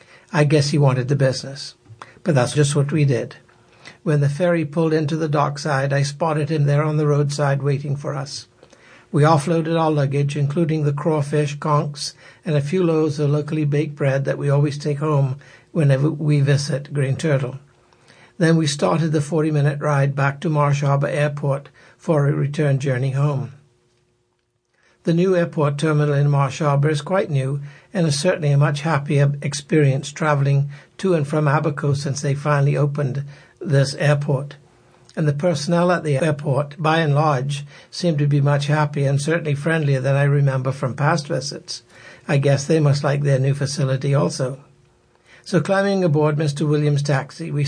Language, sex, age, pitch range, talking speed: English, male, 60-79, 140-155 Hz, 175 wpm